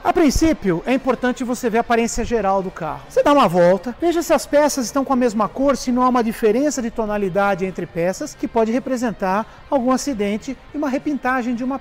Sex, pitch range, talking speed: male, 215-280 Hz, 220 wpm